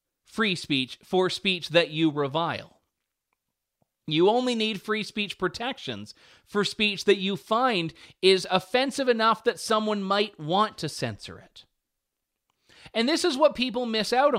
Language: English